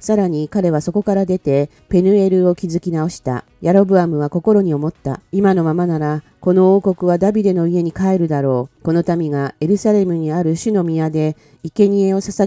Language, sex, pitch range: Japanese, female, 150-195 Hz